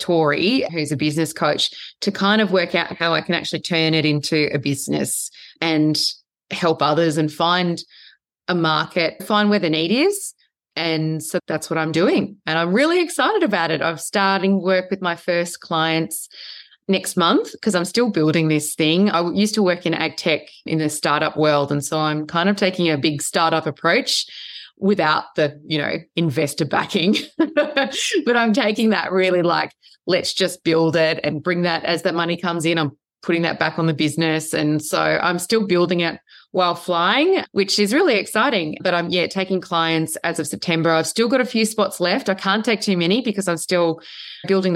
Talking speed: 195 wpm